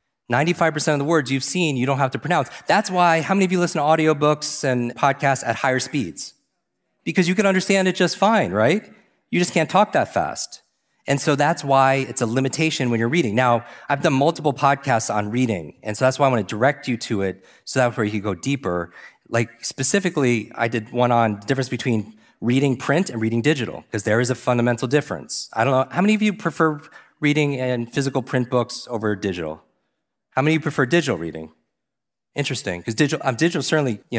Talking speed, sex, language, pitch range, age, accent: 220 wpm, male, English, 110-150 Hz, 30-49, American